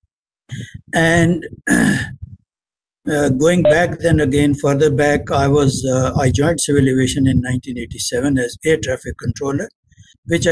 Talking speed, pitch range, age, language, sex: 125 wpm, 120-145 Hz, 60-79, English, male